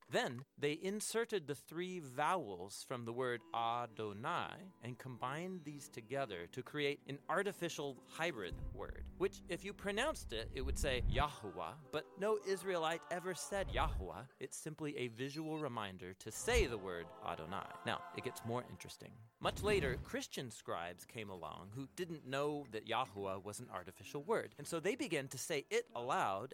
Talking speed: 165 wpm